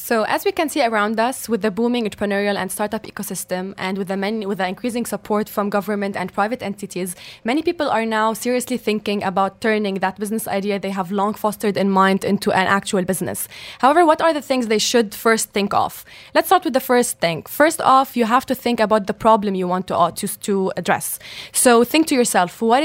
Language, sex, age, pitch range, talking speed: English, female, 10-29, 200-240 Hz, 225 wpm